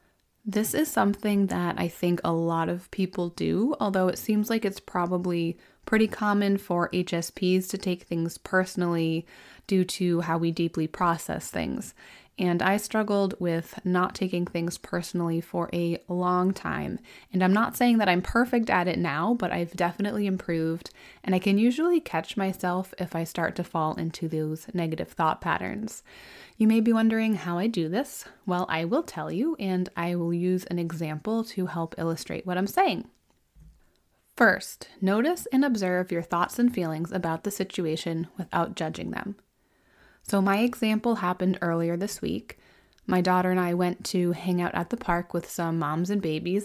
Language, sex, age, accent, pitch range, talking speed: English, female, 20-39, American, 170-205 Hz, 175 wpm